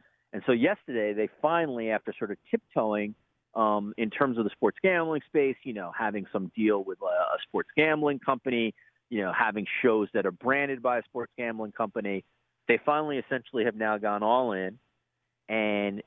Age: 40-59